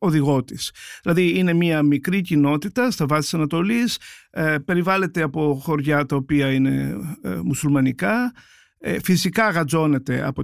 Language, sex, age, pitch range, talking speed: Greek, male, 50-69, 145-205 Hz, 125 wpm